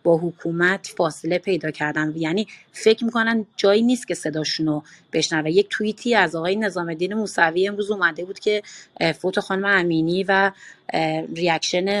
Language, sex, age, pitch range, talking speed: Persian, female, 30-49, 165-215 Hz, 145 wpm